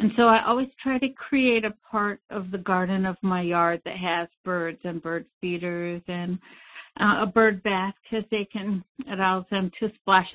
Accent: American